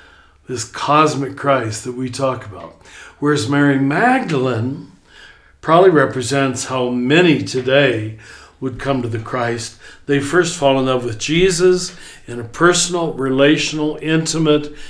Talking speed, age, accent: 130 wpm, 60-79, American